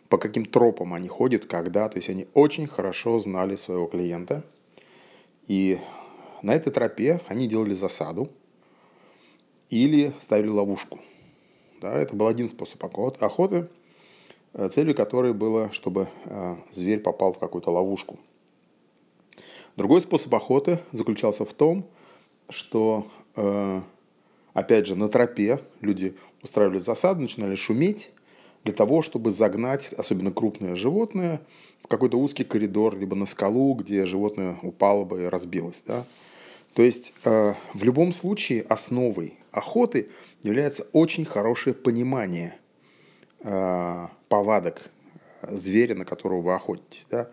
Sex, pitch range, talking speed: male, 95-130 Hz, 115 wpm